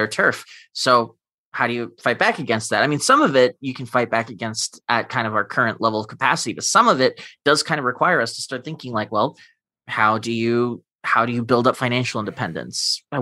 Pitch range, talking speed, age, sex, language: 110-135 Hz, 230 wpm, 20-39, male, English